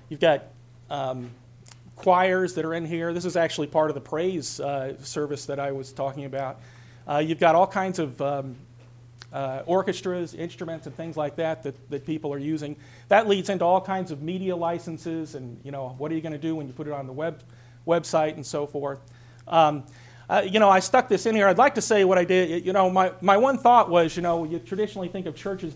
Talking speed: 230 wpm